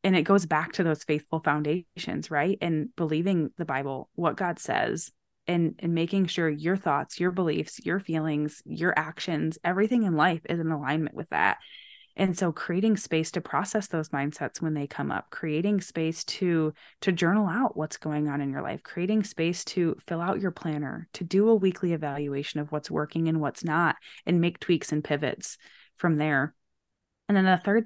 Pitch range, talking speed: 155-190 Hz, 190 wpm